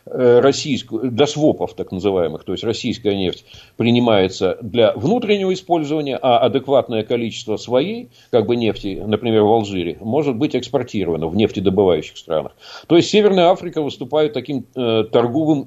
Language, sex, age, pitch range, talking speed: Russian, male, 50-69, 105-140 Hz, 140 wpm